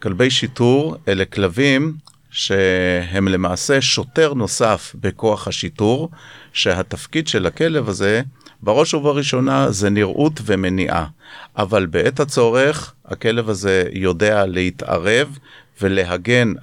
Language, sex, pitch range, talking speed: Hebrew, male, 90-125 Hz, 95 wpm